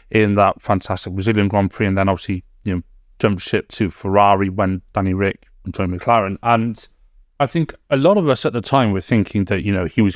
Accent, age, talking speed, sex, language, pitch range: British, 30-49, 225 wpm, male, English, 95-115 Hz